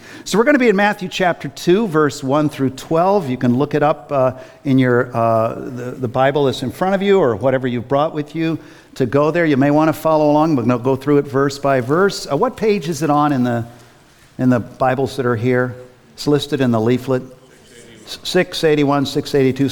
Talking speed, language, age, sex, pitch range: 225 wpm, English, 50-69, male, 120-170 Hz